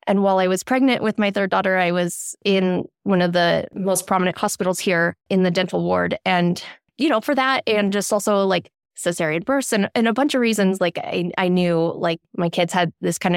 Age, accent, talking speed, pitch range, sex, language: 20-39, American, 225 wpm, 180-235 Hz, female, English